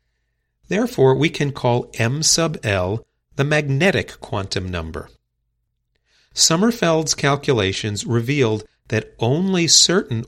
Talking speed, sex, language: 100 wpm, male, English